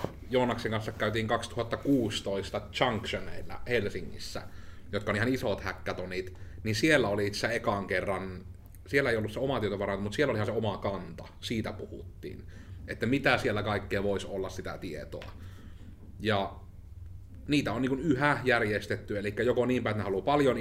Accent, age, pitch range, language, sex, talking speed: native, 30-49, 95-110 Hz, Finnish, male, 155 wpm